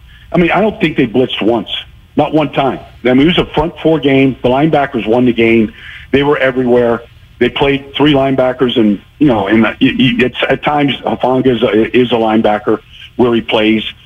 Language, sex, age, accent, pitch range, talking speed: English, male, 50-69, American, 125-165 Hz, 195 wpm